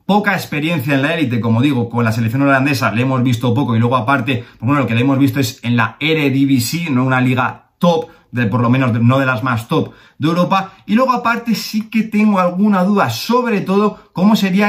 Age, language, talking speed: 30-49, Spanish, 220 wpm